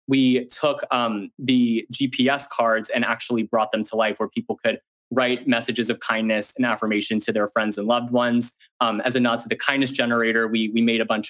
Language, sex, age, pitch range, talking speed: English, male, 20-39, 110-130 Hz, 210 wpm